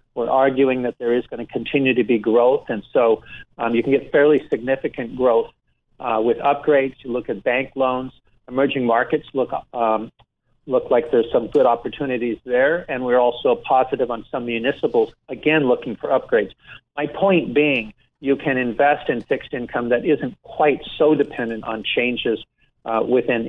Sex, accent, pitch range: male, American, 120-150 Hz